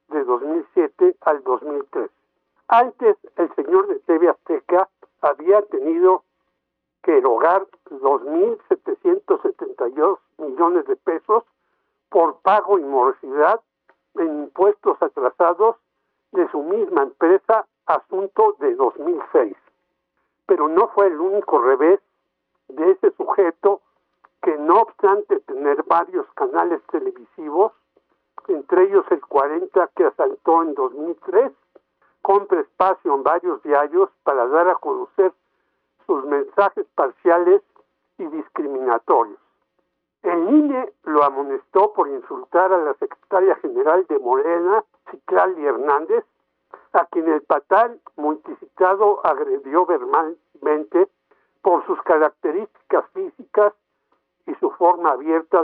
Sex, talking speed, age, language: male, 105 wpm, 60-79, Spanish